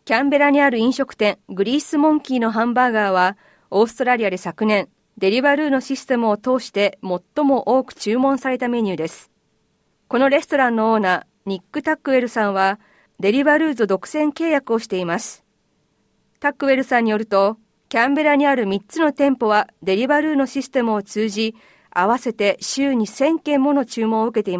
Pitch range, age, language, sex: 200-275 Hz, 40-59, Japanese, female